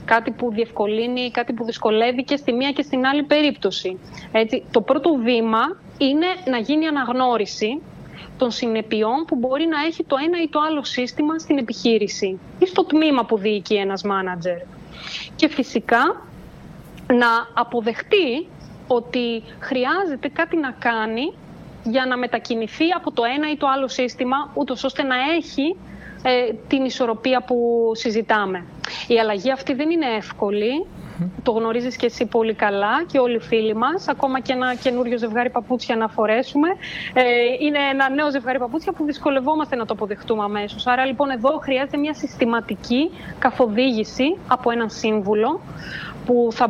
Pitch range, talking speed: 225-285 Hz, 150 wpm